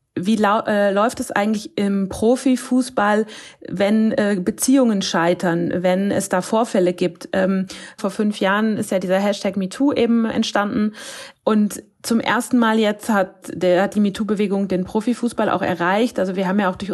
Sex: female